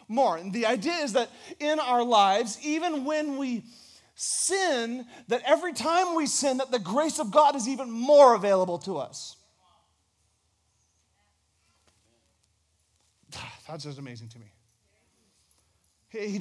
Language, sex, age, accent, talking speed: English, male, 30-49, American, 130 wpm